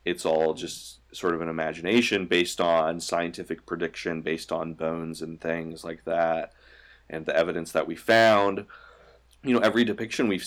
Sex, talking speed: male, 165 wpm